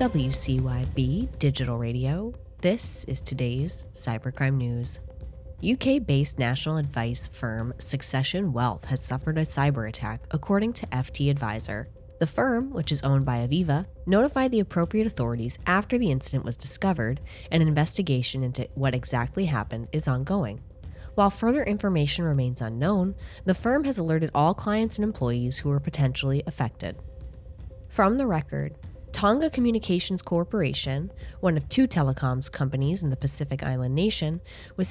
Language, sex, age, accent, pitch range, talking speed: English, female, 20-39, American, 130-195 Hz, 140 wpm